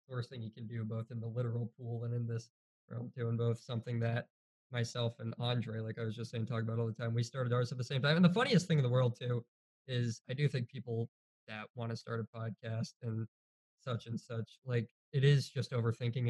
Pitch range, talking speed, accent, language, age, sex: 115-135 Hz, 245 wpm, American, English, 20-39, male